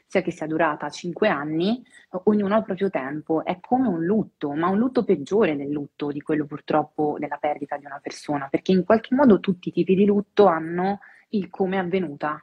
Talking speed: 210 wpm